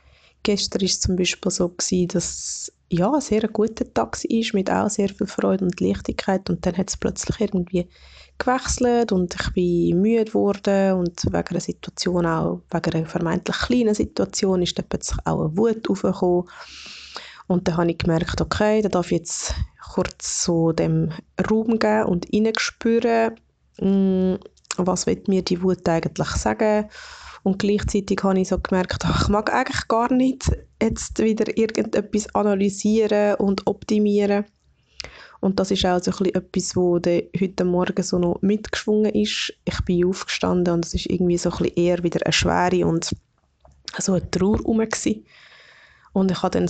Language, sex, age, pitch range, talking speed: German, female, 20-39, 175-210 Hz, 160 wpm